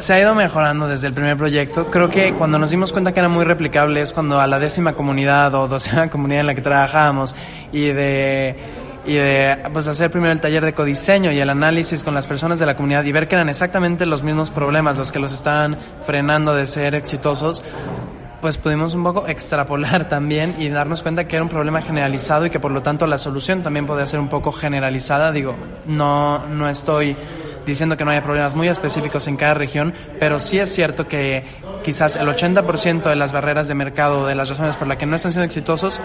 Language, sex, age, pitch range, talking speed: Spanish, male, 20-39, 140-160 Hz, 220 wpm